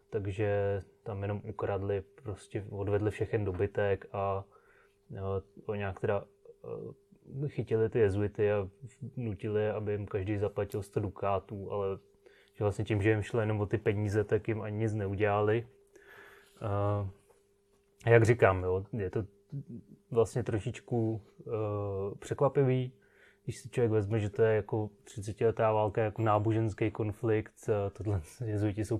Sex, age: male, 20-39